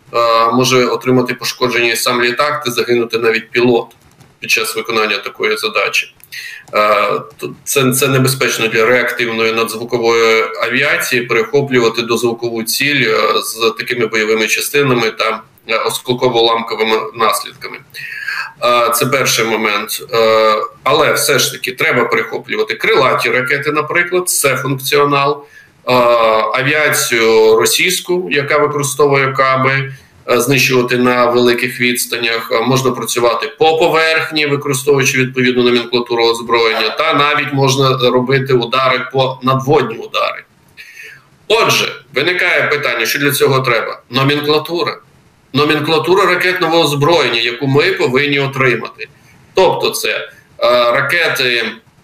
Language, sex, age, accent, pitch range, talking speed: Ukrainian, male, 20-39, native, 120-150 Hz, 100 wpm